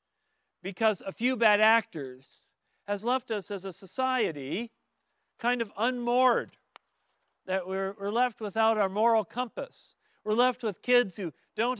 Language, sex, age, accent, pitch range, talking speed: English, male, 40-59, American, 190-240 Hz, 140 wpm